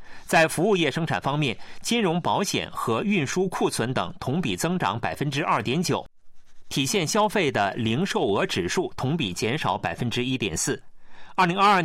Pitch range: 135-195 Hz